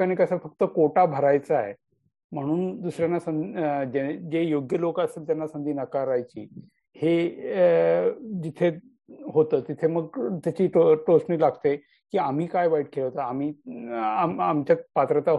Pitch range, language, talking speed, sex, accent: 145-185 Hz, Marathi, 135 wpm, male, native